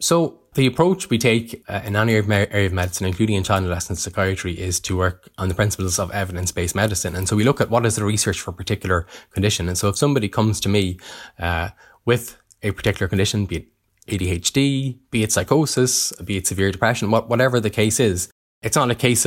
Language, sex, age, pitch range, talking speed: English, male, 10-29, 95-115 Hz, 210 wpm